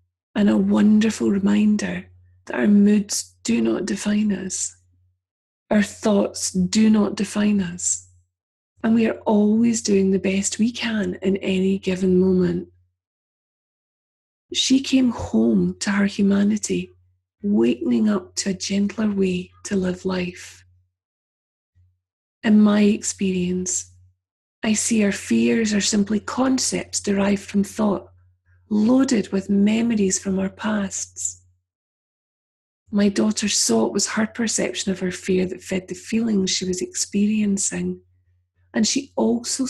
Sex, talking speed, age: female, 125 wpm, 30-49